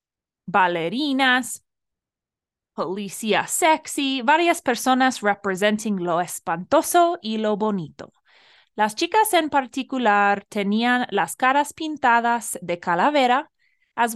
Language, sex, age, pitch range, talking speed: Spanish, female, 20-39, 200-275 Hz, 95 wpm